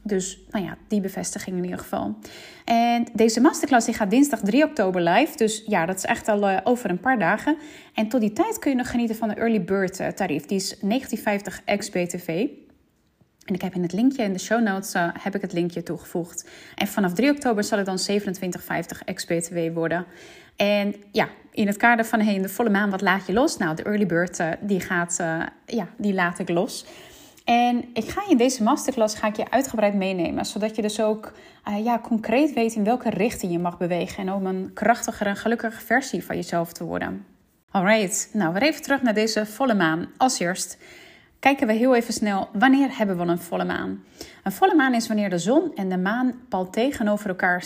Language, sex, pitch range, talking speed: Dutch, female, 185-235 Hz, 215 wpm